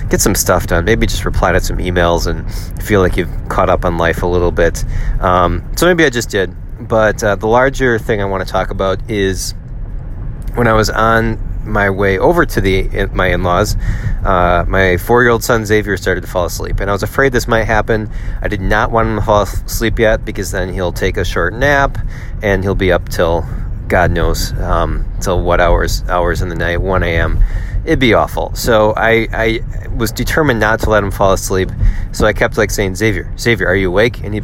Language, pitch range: English, 90-115 Hz